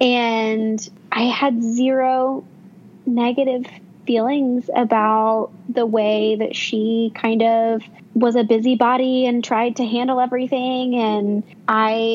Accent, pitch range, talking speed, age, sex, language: American, 210-250 Hz, 115 wpm, 20-39, female, English